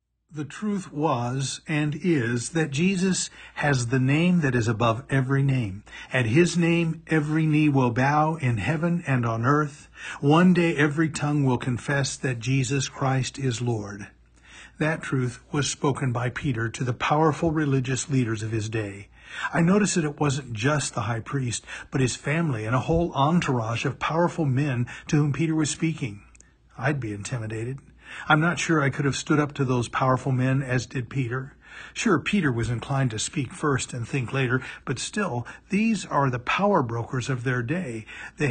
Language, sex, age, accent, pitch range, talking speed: English, male, 50-69, American, 120-150 Hz, 180 wpm